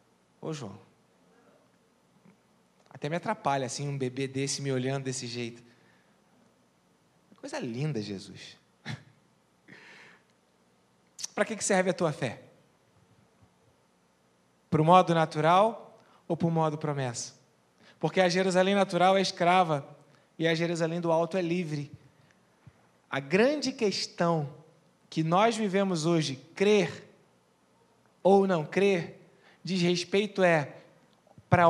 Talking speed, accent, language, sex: 110 wpm, Brazilian, Portuguese, male